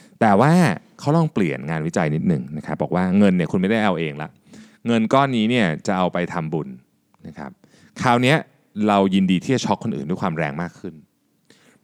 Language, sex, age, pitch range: Thai, male, 20-39, 100-160 Hz